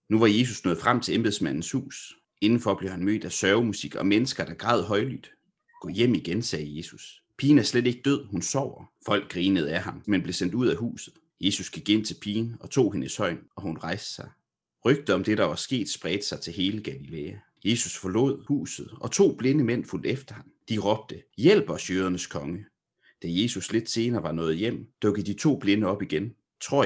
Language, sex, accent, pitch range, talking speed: Danish, male, native, 90-115 Hz, 210 wpm